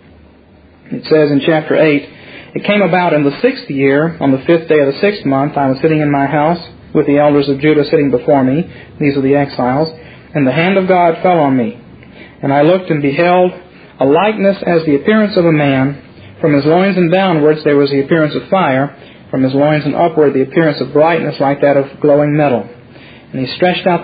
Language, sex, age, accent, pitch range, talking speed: English, male, 40-59, American, 135-165 Hz, 220 wpm